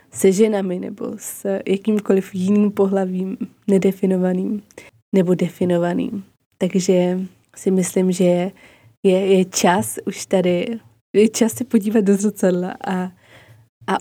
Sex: female